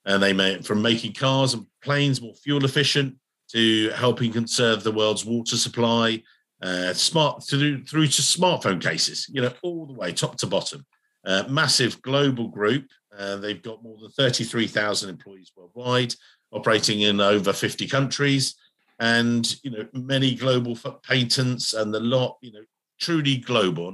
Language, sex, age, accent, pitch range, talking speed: English, male, 50-69, British, 110-140 Hz, 165 wpm